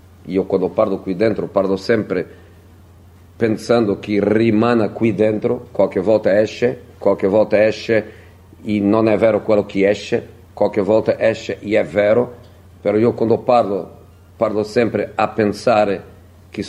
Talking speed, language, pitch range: 145 wpm, Italian, 95-120 Hz